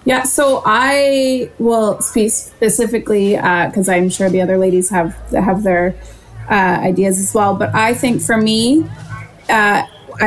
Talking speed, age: 150 wpm, 20-39